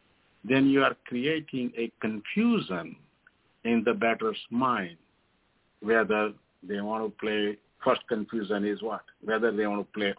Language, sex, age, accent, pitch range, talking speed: English, male, 50-69, Indian, 100-130 Hz, 140 wpm